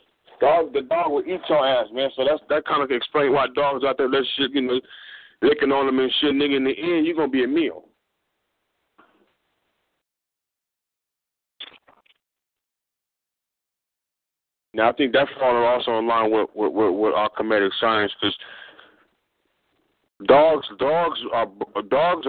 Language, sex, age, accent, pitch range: Japanese, male, 40-59, American, 120-165 Hz